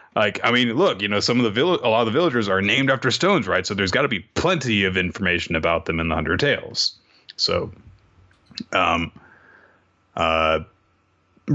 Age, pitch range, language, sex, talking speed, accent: 30-49, 80-105 Hz, English, male, 190 wpm, American